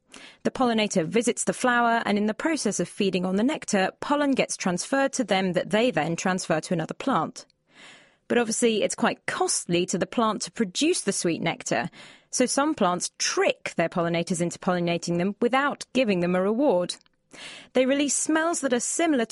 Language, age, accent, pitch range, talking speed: English, 30-49, British, 185-250 Hz, 185 wpm